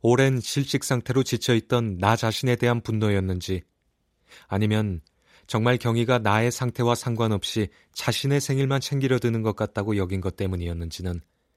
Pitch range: 95-120 Hz